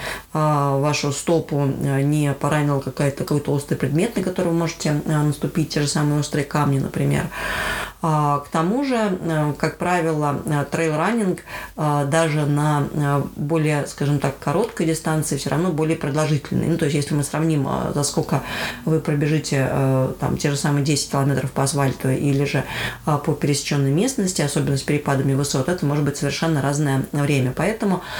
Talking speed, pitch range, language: 145 wpm, 145-170 Hz, Russian